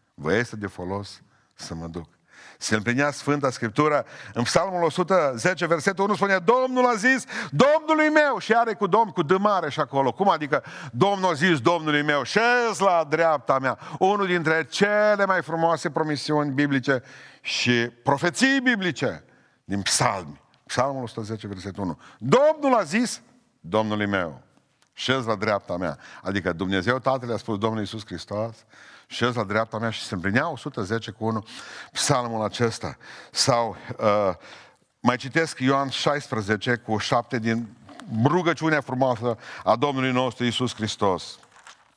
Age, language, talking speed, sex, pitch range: 50-69, Romanian, 145 wpm, male, 115-170 Hz